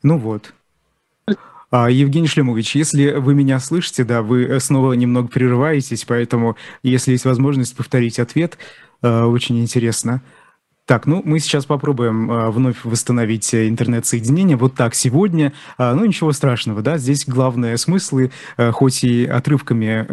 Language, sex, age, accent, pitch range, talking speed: Russian, male, 20-39, native, 120-140 Hz, 135 wpm